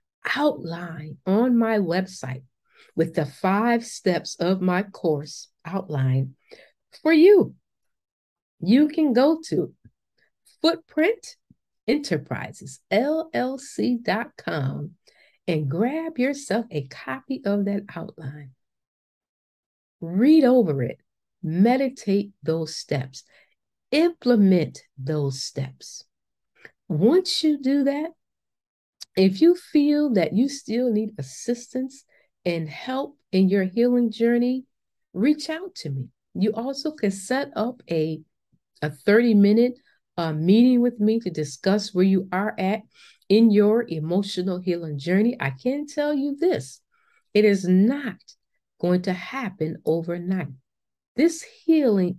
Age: 50-69